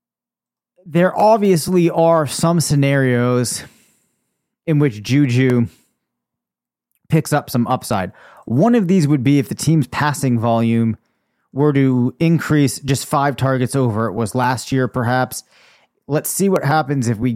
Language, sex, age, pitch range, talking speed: English, male, 30-49, 125-150 Hz, 140 wpm